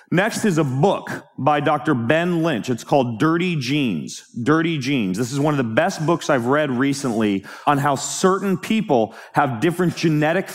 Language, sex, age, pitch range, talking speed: English, male, 30-49, 125-155 Hz, 175 wpm